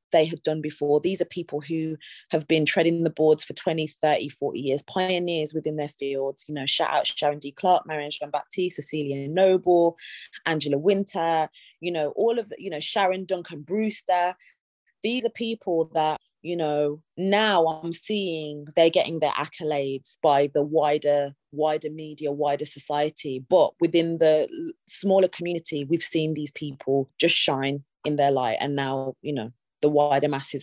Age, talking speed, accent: 20-39, 165 wpm, British